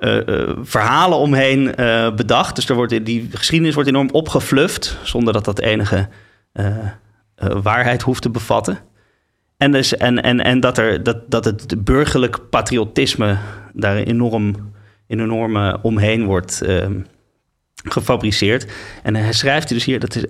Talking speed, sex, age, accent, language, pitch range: 150 wpm, male, 30-49, Dutch, Dutch, 105-125 Hz